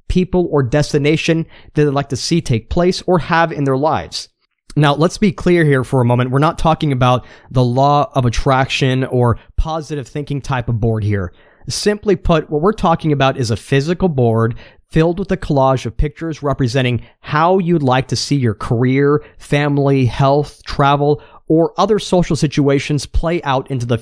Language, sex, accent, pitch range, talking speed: English, male, American, 130-160 Hz, 180 wpm